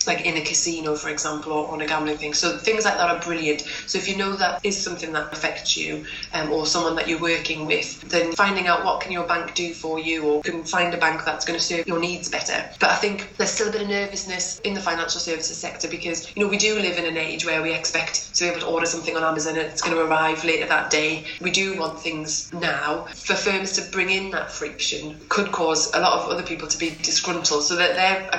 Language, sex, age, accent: English, female, 20-39, British